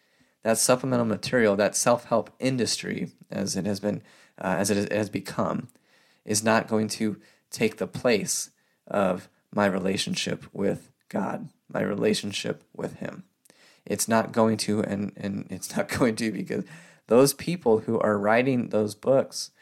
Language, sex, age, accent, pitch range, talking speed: English, male, 20-39, American, 105-120 Hz, 150 wpm